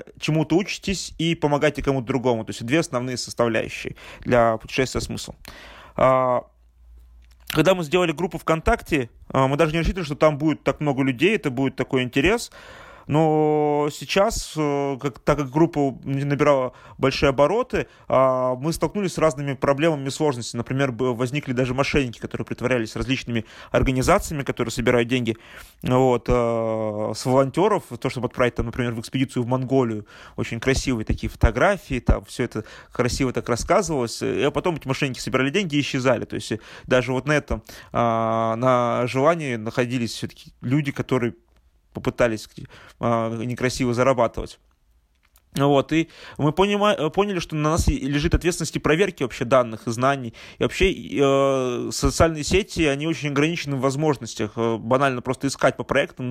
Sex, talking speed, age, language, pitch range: male, 140 wpm, 30-49, Russian, 120-150 Hz